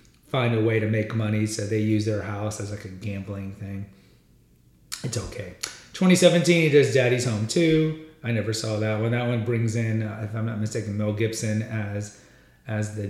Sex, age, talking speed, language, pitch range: male, 30-49, 195 wpm, English, 105-135 Hz